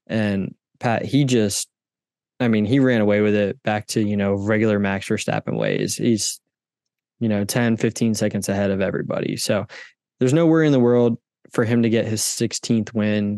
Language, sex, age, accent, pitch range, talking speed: English, male, 20-39, American, 105-125 Hz, 190 wpm